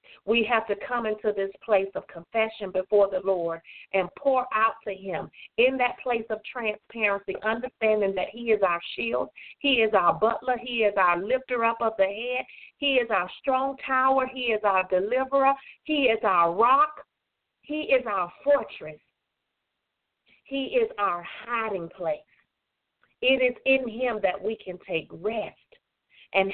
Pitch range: 180-225 Hz